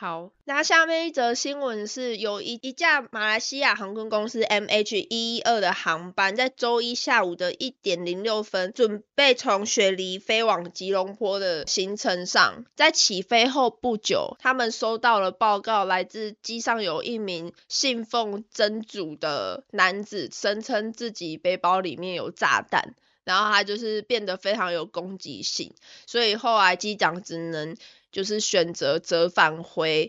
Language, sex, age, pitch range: Chinese, female, 20-39, 180-235 Hz